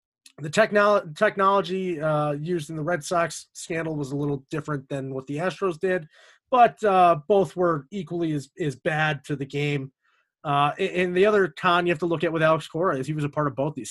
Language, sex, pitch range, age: English, male, 145-180 Hz, 30-49